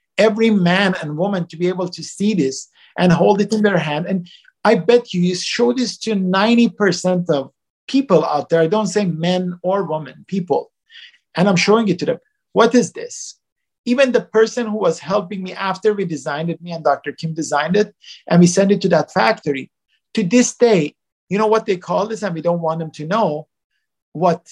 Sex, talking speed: male, 210 wpm